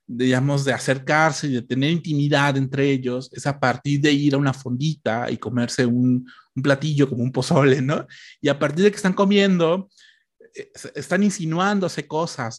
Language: Spanish